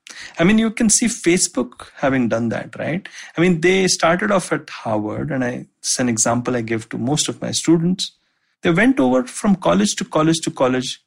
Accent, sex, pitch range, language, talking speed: Indian, male, 130-185 Hz, English, 200 wpm